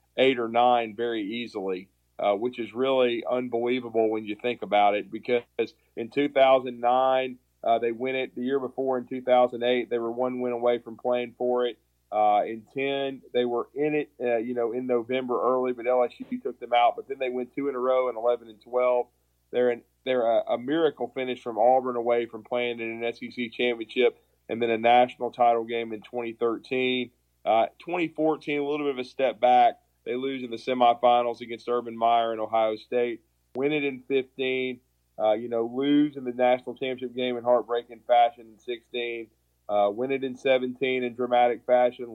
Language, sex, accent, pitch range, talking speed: English, male, American, 115-130 Hz, 190 wpm